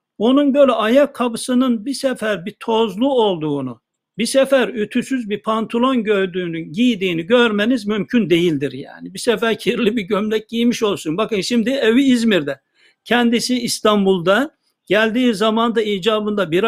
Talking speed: 135 wpm